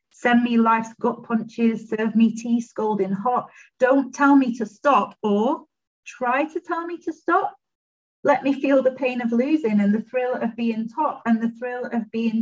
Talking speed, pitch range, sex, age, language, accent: 195 wpm, 195-240 Hz, female, 40-59, English, British